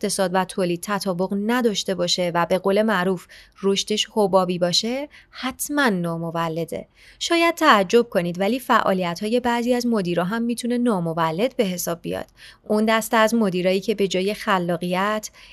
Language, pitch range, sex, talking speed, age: Persian, 185-230 Hz, female, 145 wpm, 30-49